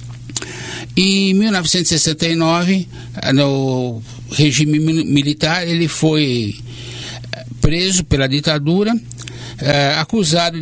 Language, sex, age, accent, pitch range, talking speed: English, male, 60-79, Brazilian, 130-165 Hz, 70 wpm